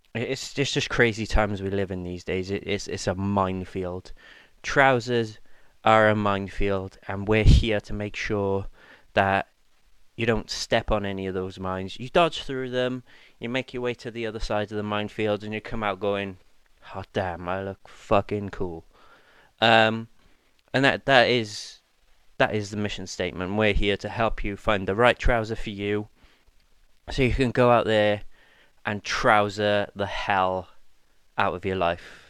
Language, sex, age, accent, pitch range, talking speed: English, male, 20-39, British, 100-110 Hz, 175 wpm